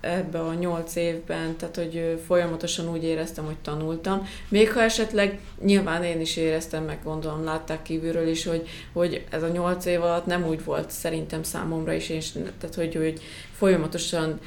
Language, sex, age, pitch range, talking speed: Hungarian, female, 20-39, 165-190 Hz, 175 wpm